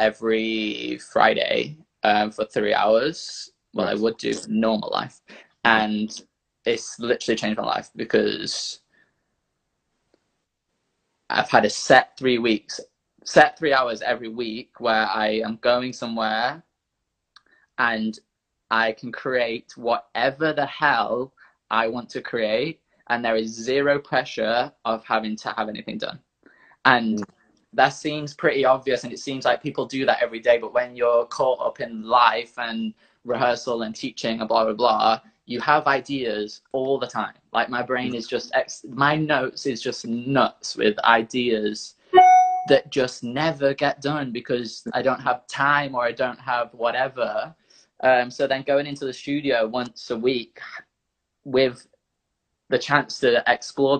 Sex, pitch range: male, 110-135 Hz